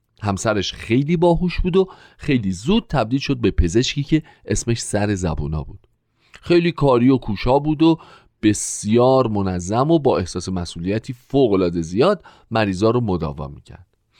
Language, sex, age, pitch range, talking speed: Persian, male, 40-59, 100-165 Hz, 150 wpm